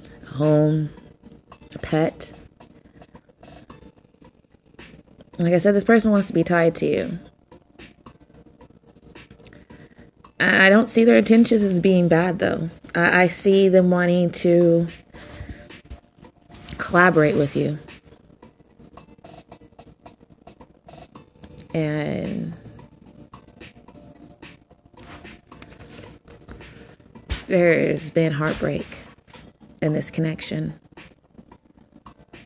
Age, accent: 20-39, American